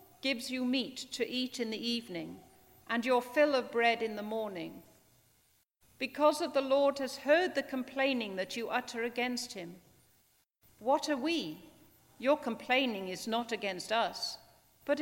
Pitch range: 205-270 Hz